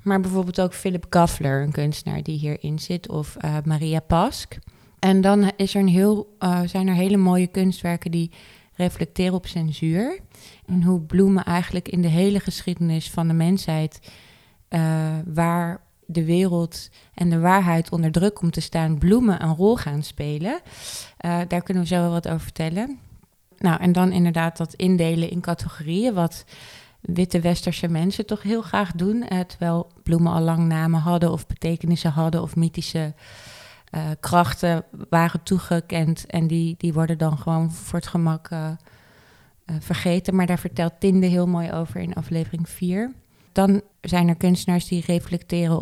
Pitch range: 160-185 Hz